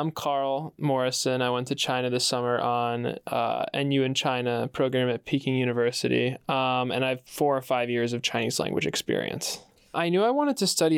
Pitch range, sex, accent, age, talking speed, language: 130-145 Hz, male, American, 20-39, 195 wpm, English